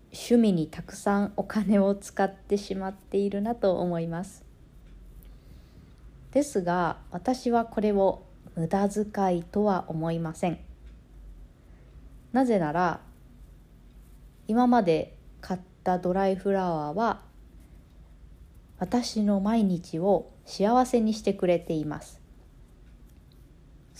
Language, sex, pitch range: Japanese, female, 175-215 Hz